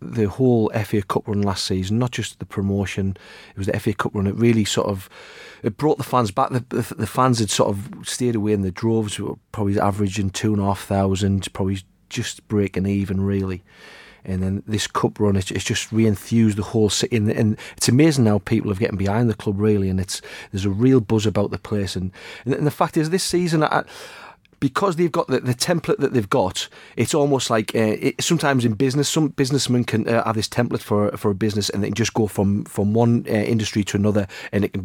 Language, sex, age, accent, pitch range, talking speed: English, male, 30-49, British, 100-120 Hz, 230 wpm